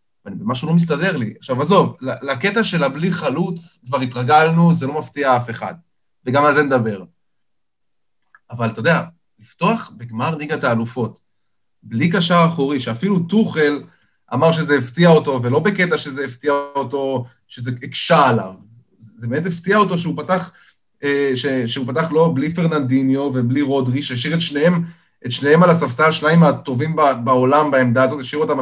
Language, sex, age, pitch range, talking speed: Hebrew, male, 20-39, 130-170 Hz, 150 wpm